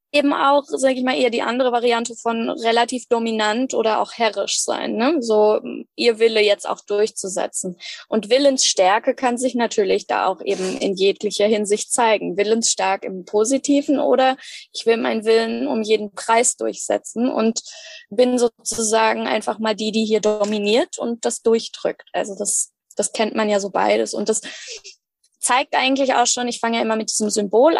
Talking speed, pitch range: 170 wpm, 220-260 Hz